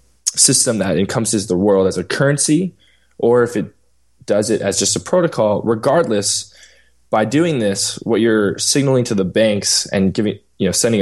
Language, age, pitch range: English, 10-29, 95-120 Hz